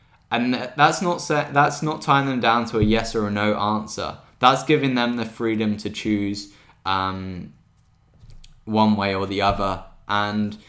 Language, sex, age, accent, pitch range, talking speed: English, male, 10-29, British, 100-115 Hz, 170 wpm